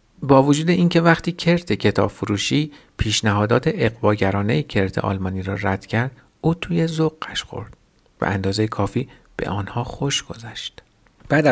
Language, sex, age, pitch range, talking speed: Persian, male, 50-69, 105-135 Hz, 135 wpm